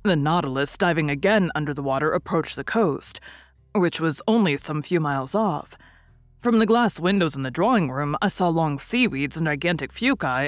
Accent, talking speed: American, 185 wpm